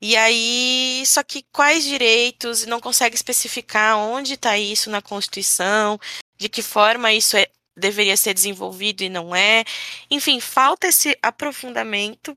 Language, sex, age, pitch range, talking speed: Portuguese, female, 10-29, 205-265 Hz, 145 wpm